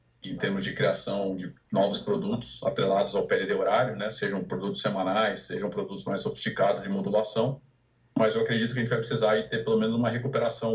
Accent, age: Brazilian, 40-59